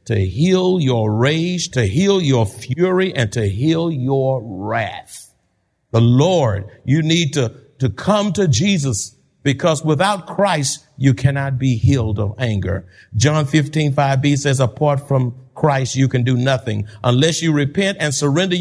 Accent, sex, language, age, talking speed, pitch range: American, male, English, 50-69, 150 wpm, 125-185 Hz